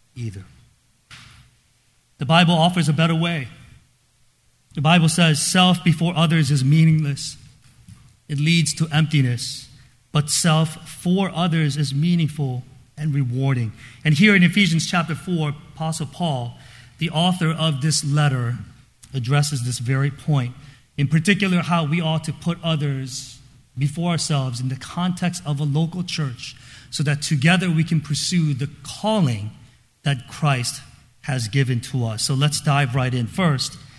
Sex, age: male, 40-59